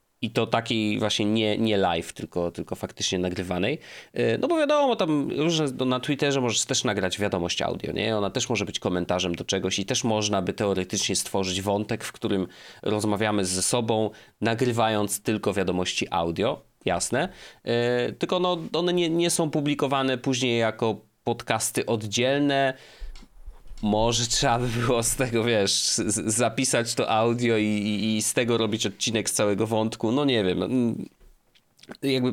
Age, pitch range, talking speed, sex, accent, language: 30-49, 105-145 Hz, 155 wpm, male, native, Polish